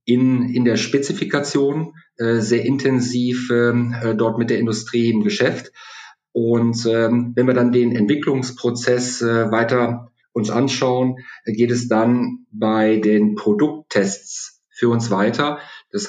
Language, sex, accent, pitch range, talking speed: German, male, German, 110-125 Hz, 135 wpm